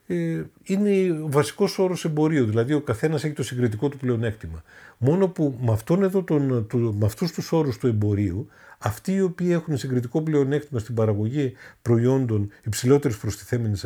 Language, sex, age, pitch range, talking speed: Greek, male, 50-69, 110-150 Hz, 145 wpm